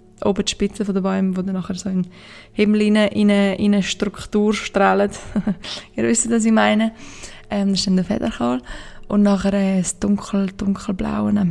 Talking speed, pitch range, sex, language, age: 185 wpm, 190-210 Hz, female, German, 20-39